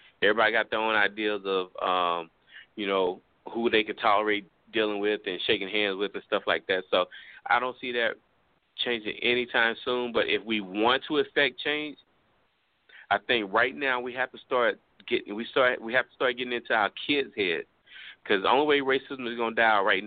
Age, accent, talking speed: 30-49, American, 205 wpm